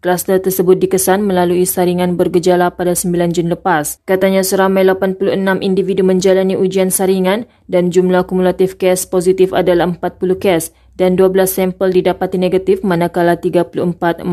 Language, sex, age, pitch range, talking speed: Malay, female, 20-39, 185-210 Hz, 135 wpm